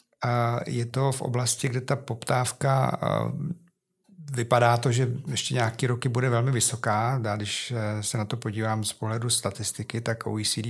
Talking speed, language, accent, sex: 155 wpm, Czech, native, male